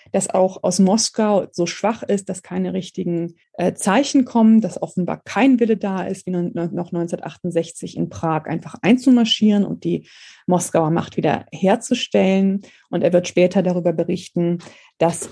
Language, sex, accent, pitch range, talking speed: German, female, German, 175-215 Hz, 155 wpm